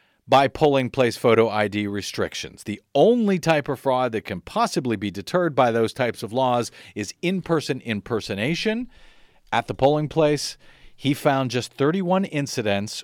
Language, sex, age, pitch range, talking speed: English, male, 40-59, 105-140 Hz, 150 wpm